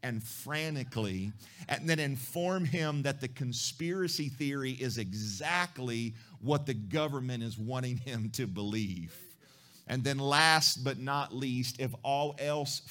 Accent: American